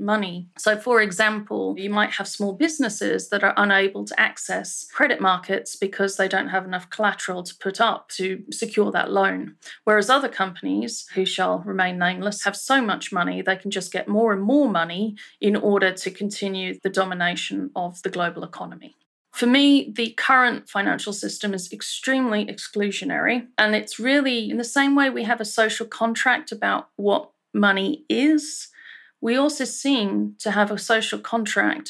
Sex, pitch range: female, 195-240 Hz